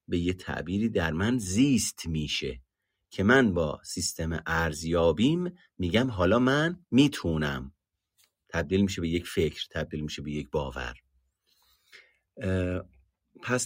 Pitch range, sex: 90-120 Hz, male